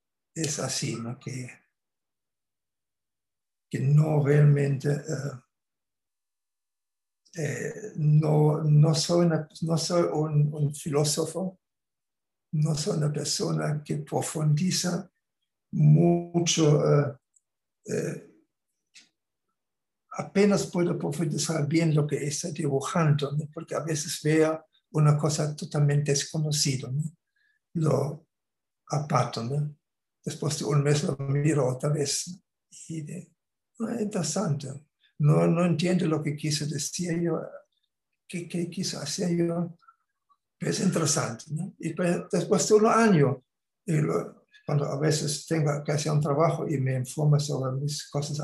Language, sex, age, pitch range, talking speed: Spanish, male, 60-79, 145-170 Hz, 120 wpm